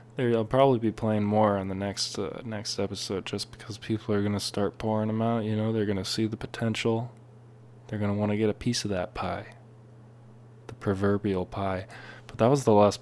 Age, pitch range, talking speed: 10-29, 100-120 Hz, 220 wpm